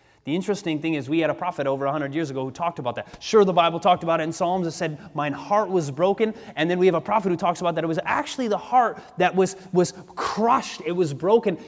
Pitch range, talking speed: 165-230 Hz, 265 wpm